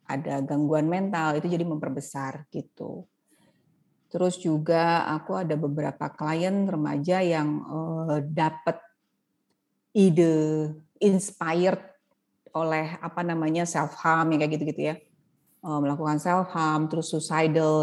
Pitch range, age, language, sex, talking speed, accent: 155-180 Hz, 30-49, Indonesian, female, 110 wpm, native